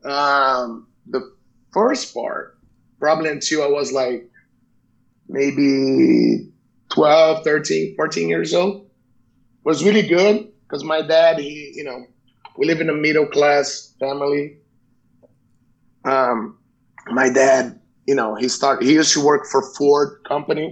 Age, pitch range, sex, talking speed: 30-49, 125-150 Hz, male, 130 wpm